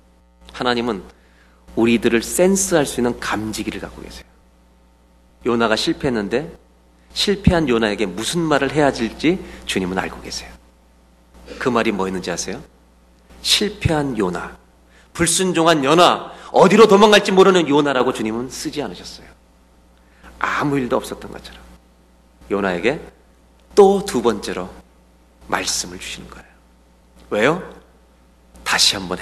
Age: 40-59